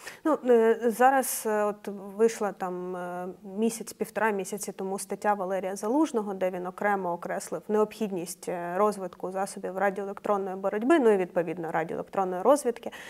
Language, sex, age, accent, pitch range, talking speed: Ukrainian, female, 20-39, native, 190-225 Hz, 115 wpm